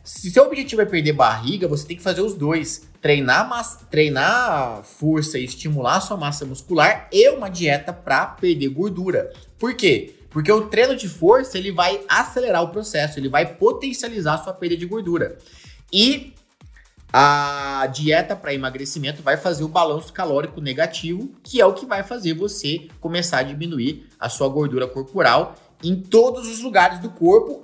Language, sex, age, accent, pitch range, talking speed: Portuguese, male, 20-39, Brazilian, 150-225 Hz, 165 wpm